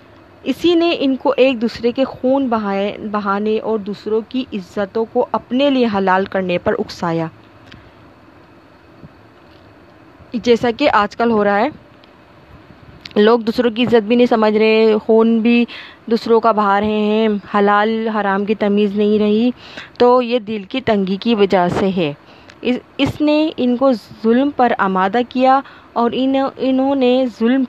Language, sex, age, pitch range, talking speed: Urdu, female, 20-39, 215-260 Hz, 150 wpm